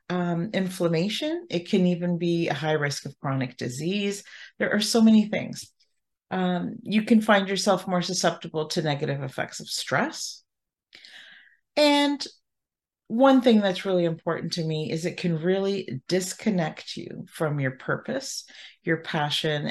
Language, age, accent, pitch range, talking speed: English, 40-59, American, 155-210 Hz, 145 wpm